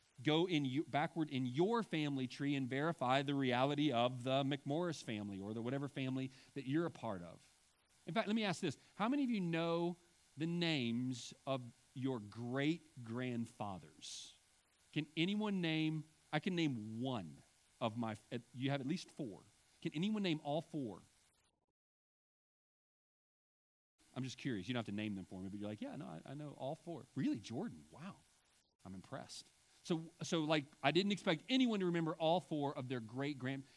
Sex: male